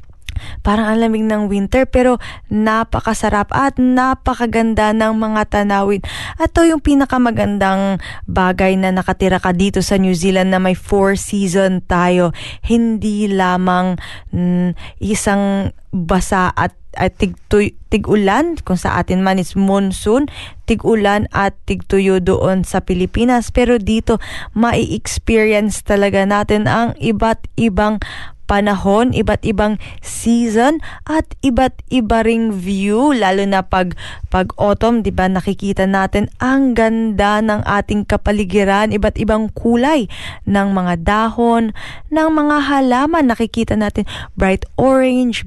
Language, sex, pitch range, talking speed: Filipino, female, 190-230 Hz, 120 wpm